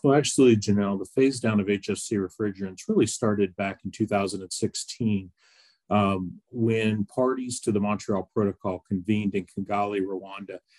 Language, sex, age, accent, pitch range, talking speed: English, male, 40-59, American, 95-115 Hz, 140 wpm